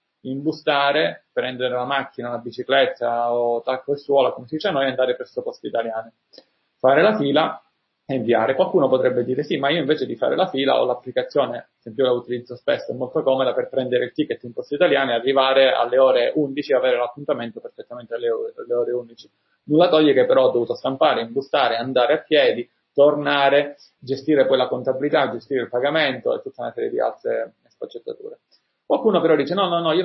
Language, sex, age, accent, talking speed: Italian, male, 30-49, native, 200 wpm